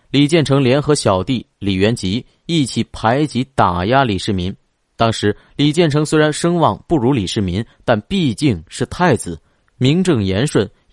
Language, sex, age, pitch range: Chinese, male, 30-49, 100-135 Hz